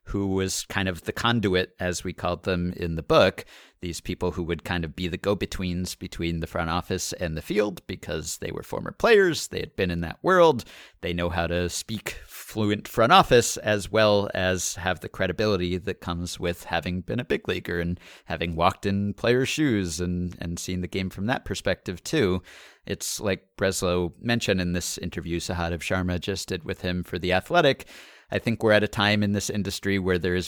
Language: English